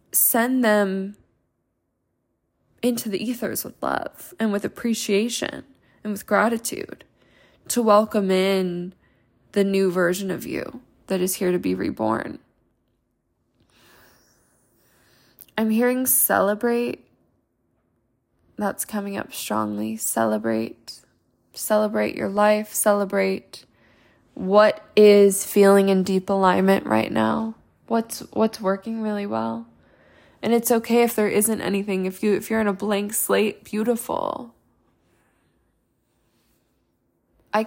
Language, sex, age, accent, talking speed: English, female, 10-29, American, 110 wpm